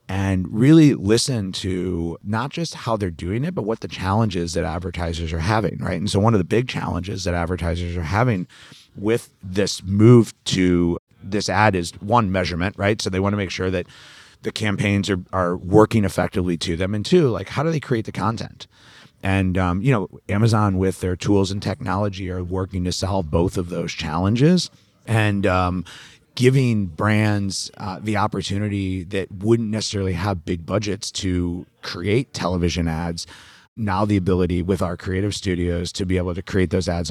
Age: 30-49